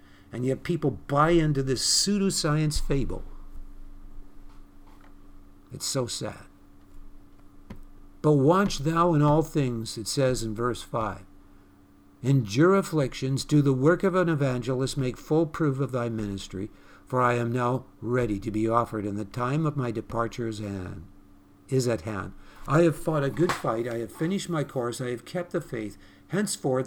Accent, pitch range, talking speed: American, 105-155 Hz, 155 wpm